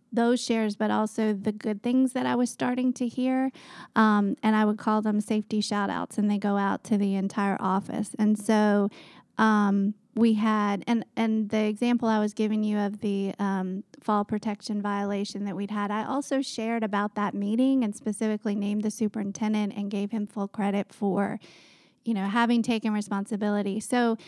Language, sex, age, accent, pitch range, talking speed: English, female, 30-49, American, 200-225 Hz, 185 wpm